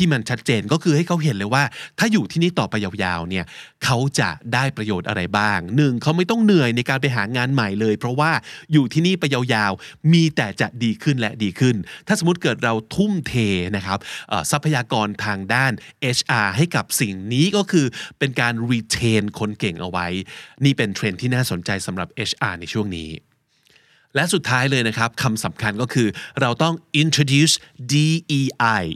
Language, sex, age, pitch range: Thai, male, 20-39, 110-150 Hz